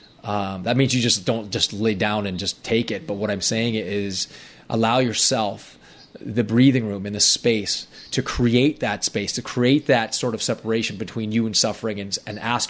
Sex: male